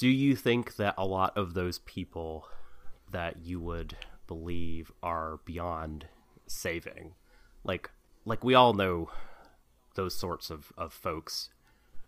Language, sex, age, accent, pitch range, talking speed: English, male, 30-49, American, 85-105 Hz, 130 wpm